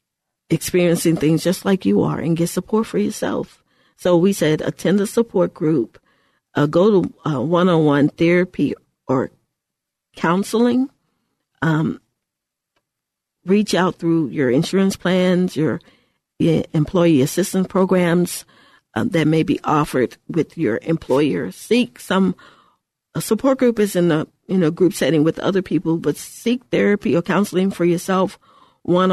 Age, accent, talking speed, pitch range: 40-59, American, 140 wpm, 160-195 Hz